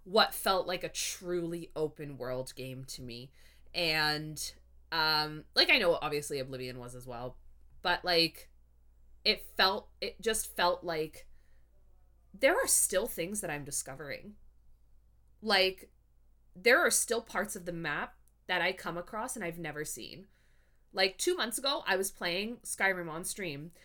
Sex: female